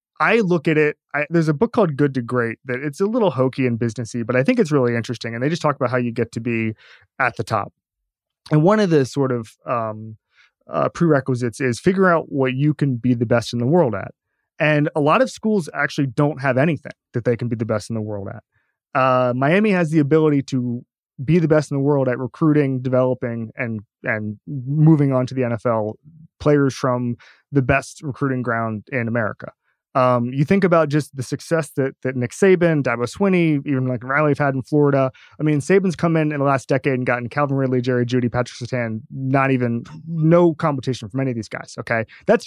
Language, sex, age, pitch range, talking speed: English, male, 20-39, 125-160 Hz, 220 wpm